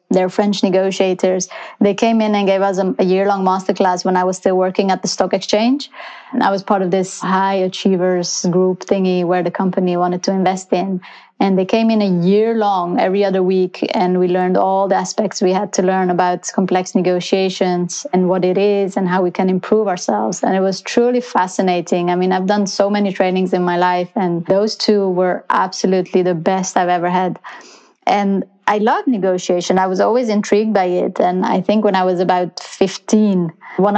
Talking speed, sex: 205 wpm, female